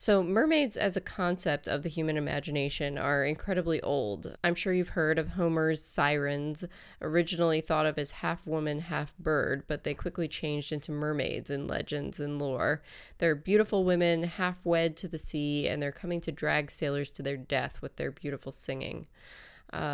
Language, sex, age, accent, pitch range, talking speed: English, female, 20-39, American, 150-170 Hz, 170 wpm